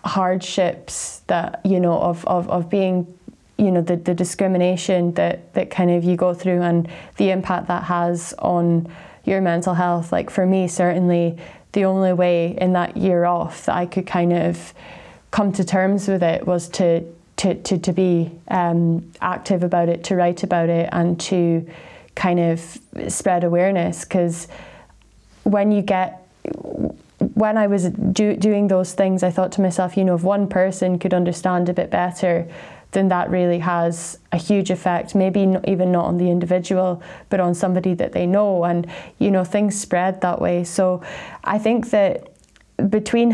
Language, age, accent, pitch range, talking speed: English, 20-39, British, 175-195 Hz, 175 wpm